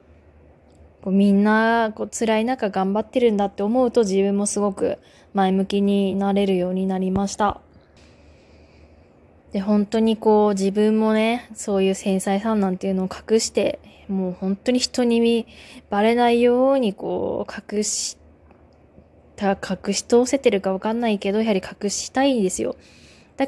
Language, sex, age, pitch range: Japanese, female, 20-39, 185-220 Hz